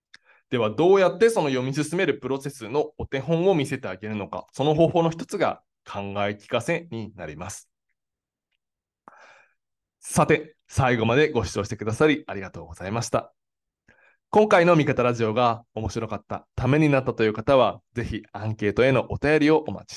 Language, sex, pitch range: Japanese, male, 105-150 Hz